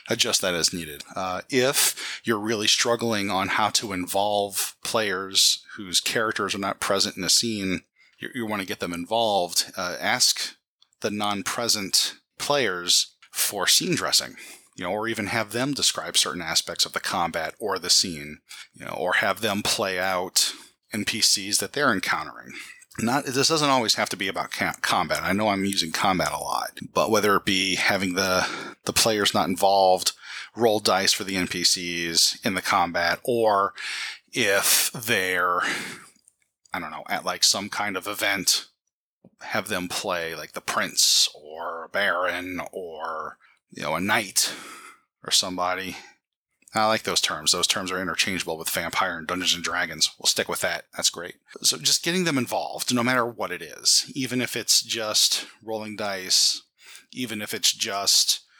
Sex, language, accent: male, English, American